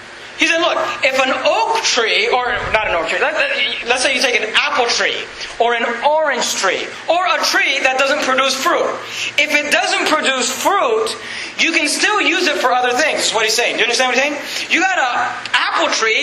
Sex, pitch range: male, 255-325 Hz